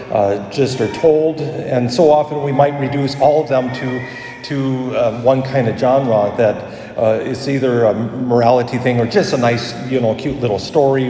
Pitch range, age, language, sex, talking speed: 115-135 Hz, 40-59, English, male, 195 wpm